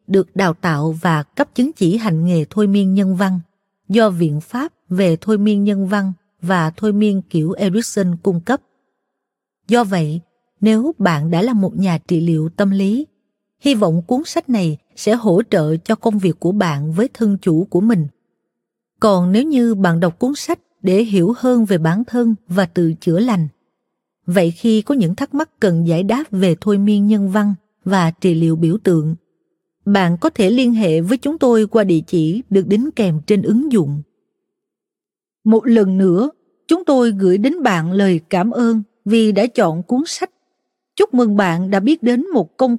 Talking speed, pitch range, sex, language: 190 wpm, 180-230 Hz, female, Vietnamese